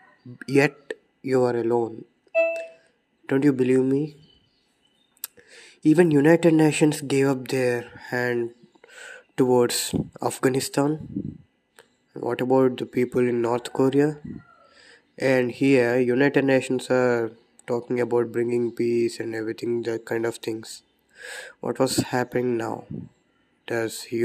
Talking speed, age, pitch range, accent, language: 110 wpm, 20-39, 120-135 Hz, native, Telugu